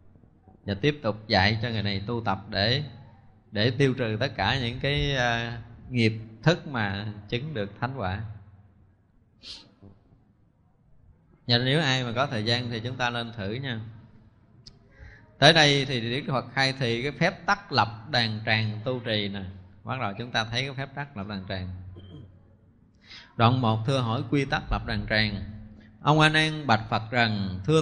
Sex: male